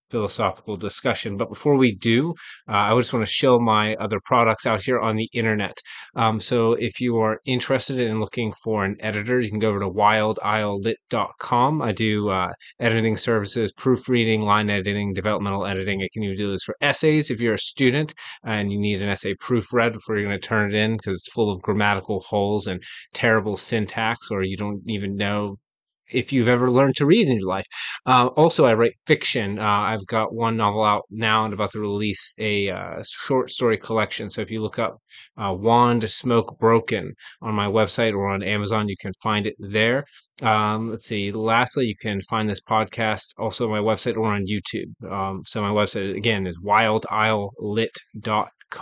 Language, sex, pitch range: English, male, 105-115 Hz